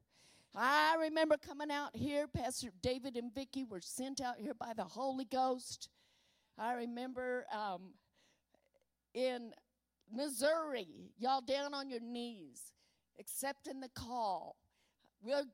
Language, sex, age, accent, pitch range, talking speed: English, female, 50-69, American, 250-300 Hz, 120 wpm